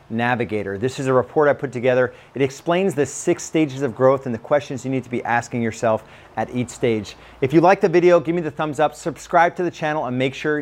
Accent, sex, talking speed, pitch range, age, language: American, male, 250 wpm, 115-145 Hz, 40-59, English